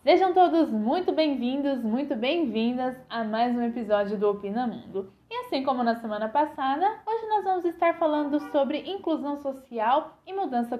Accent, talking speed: Brazilian, 160 wpm